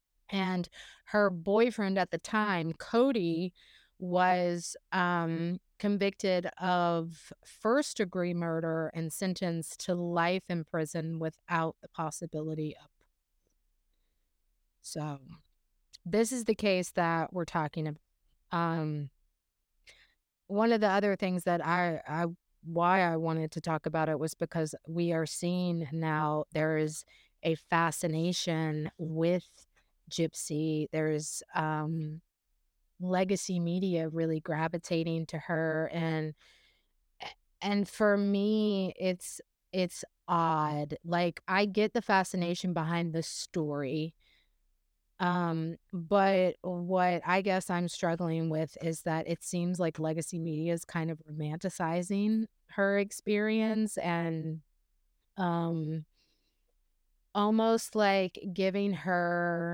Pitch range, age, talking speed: 160-185 Hz, 30-49, 110 wpm